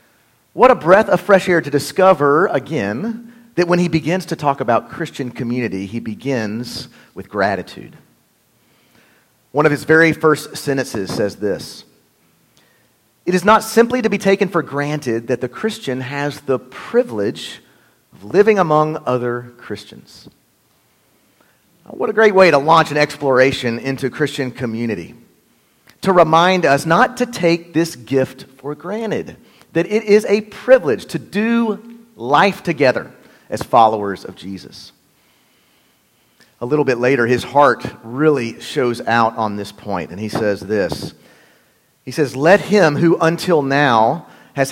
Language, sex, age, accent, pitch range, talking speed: English, male, 40-59, American, 130-205 Hz, 145 wpm